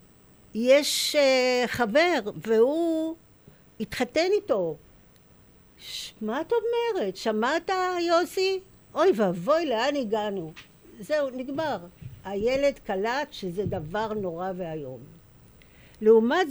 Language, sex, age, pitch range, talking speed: Hebrew, female, 60-79, 195-300 Hz, 85 wpm